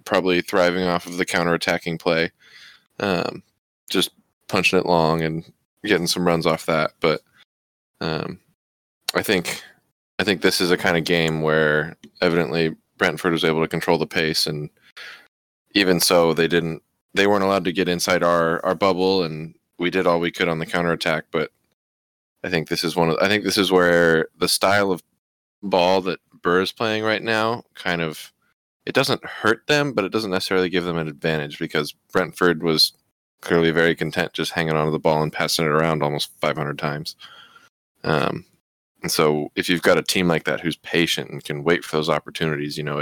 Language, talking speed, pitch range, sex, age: English, 190 wpm, 80-90 Hz, male, 20-39